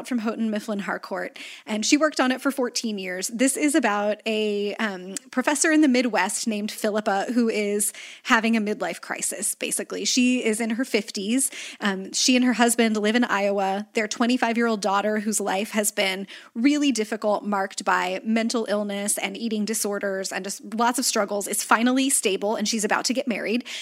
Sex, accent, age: female, American, 20-39